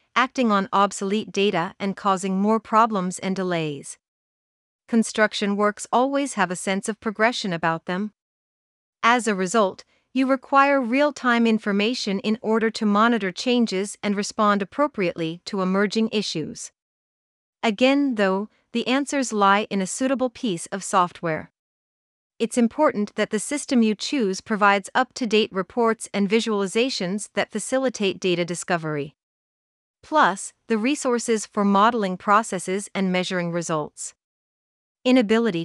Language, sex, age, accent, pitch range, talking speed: English, female, 40-59, American, 185-230 Hz, 125 wpm